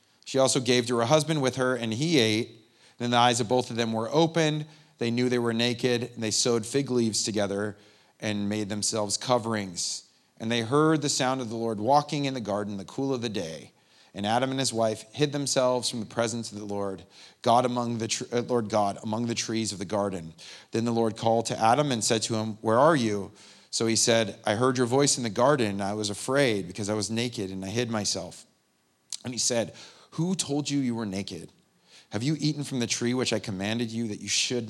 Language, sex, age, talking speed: English, male, 30-49, 235 wpm